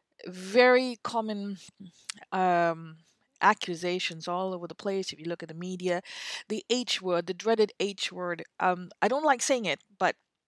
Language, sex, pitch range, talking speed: English, female, 185-260 Hz, 160 wpm